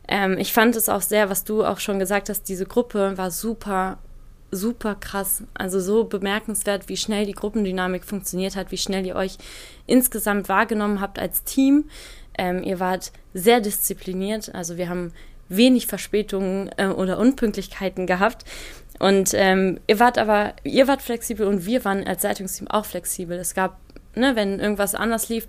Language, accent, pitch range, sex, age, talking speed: German, German, 190-210 Hz, female, 20-39, 170 wpm